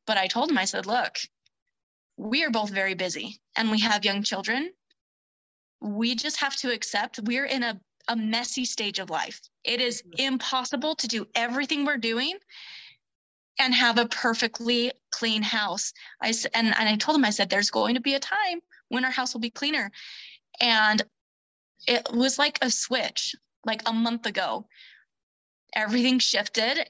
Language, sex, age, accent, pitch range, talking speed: English, female, 20-39, American, 215-255 Hz, 170 wpm